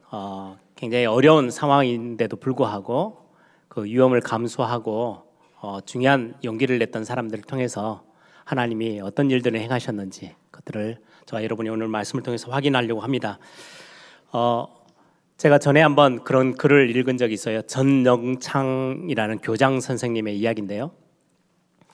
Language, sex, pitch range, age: Korean, male, 115-140 Hz, 30-49